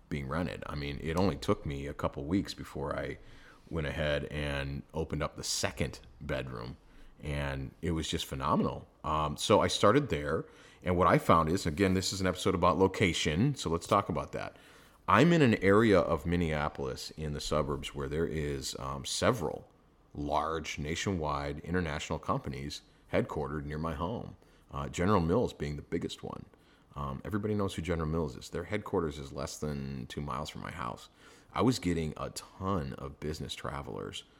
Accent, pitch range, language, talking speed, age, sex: American, 70-85 Hz, English, 180 wpm, 30-49, male